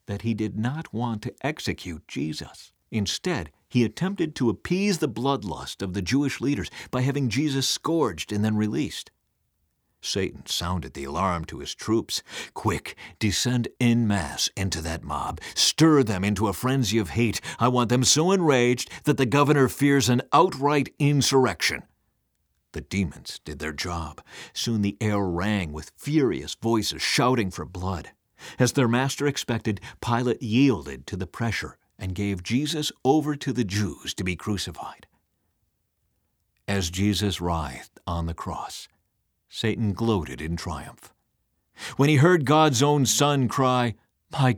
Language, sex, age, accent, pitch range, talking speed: English, male, 50-69, American, 90-130 Hz, 150 wpm